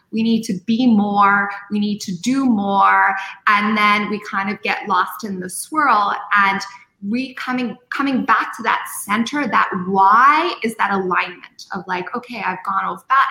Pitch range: 190-235 Hz